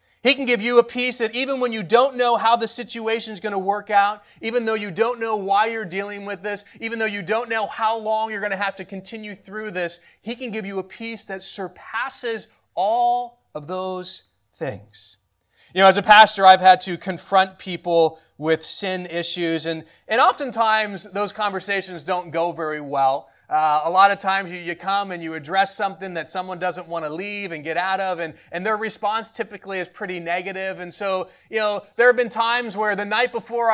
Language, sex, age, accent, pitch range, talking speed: English, male, 30-49, American, 185-225 Hz, 215 wpm